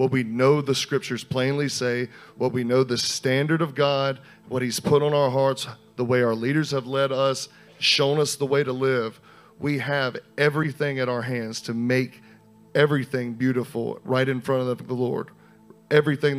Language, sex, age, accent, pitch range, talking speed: English, male, 40-59, American, 130-150 Hz, 185 wpm